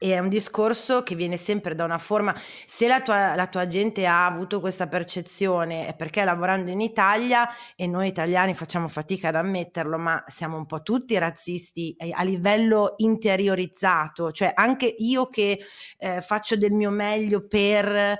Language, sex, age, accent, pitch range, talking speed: Italian, female, 30-49, native, 175-215 Hz, 170 wpm